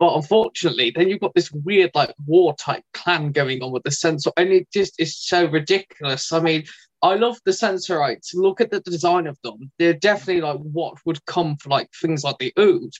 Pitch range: 155-195 Hz